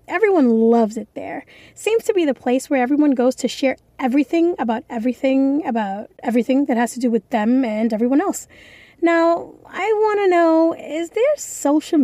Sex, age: female, 20-39